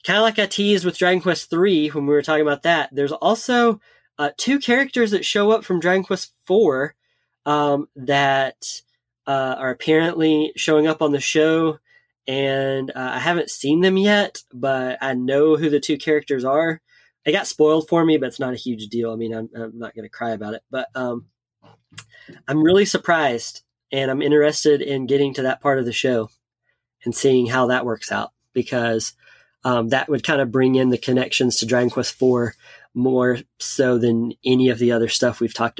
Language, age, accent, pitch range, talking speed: English, 20-39, American, 130-180 Hz, 200 wpm